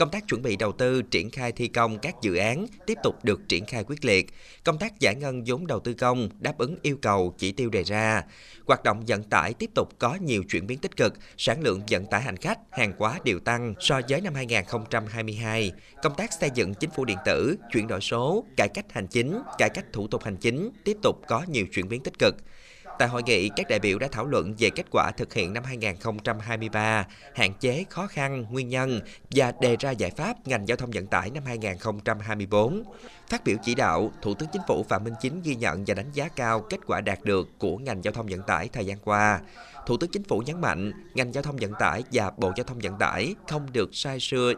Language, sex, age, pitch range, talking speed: Vietnamese, male, 20-39, 105-135 Hz, 235 wpm